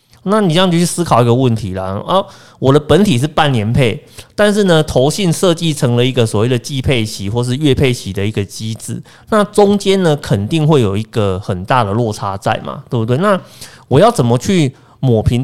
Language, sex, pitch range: Chinese, male, 115-160 Hz